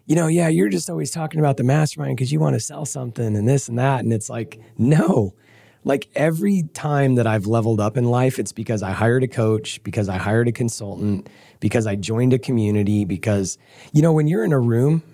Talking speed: 225 wpm